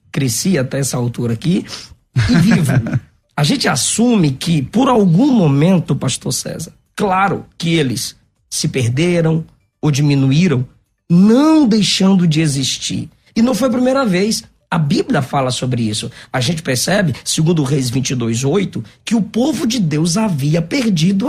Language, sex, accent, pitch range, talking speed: Portuguese, male, Brazilian, 140-220 Hz, 145 wpm